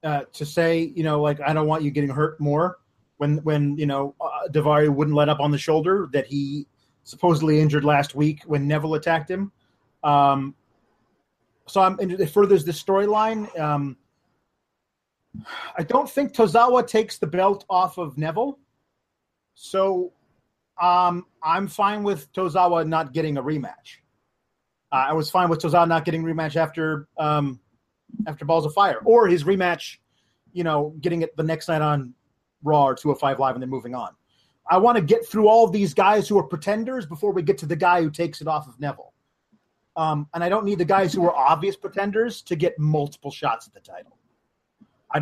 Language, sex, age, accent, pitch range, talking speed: English, male, 30-49, American, 145-190 Hz, 190 wpm